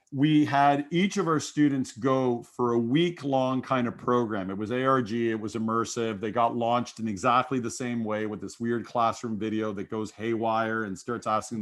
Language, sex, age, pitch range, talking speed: English, male, 40-59, 115-140 Hz, 195 wpm